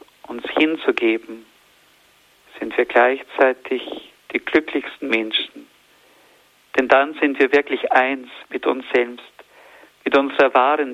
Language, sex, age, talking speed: German, male, 50-69, 110 wpm